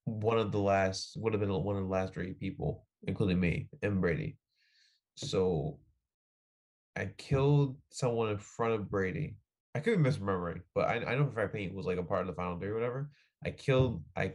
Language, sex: English, male